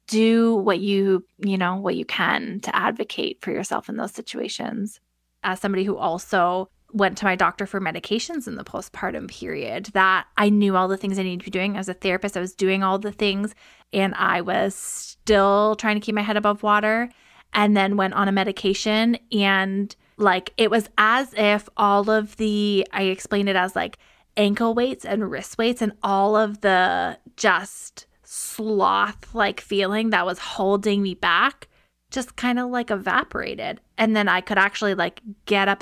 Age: 20-39